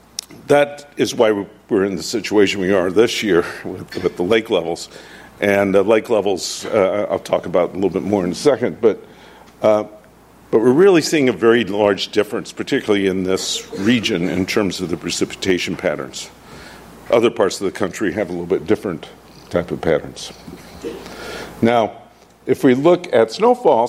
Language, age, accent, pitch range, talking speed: English, 50-69, American, 95-130 Hz, 175 wpm